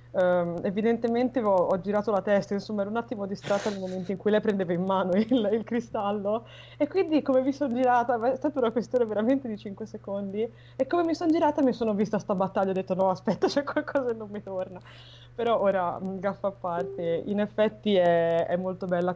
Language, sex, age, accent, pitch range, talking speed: Italian, female, 20-39, native, 165-205 Hz, 215 wpm